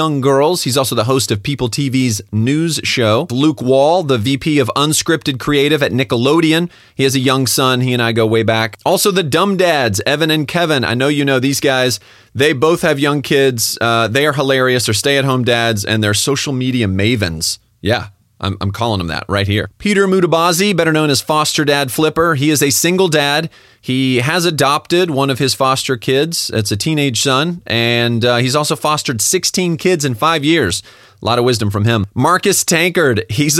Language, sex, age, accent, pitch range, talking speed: English, male, 30-49, American, 115-155 Hz, 200 wpm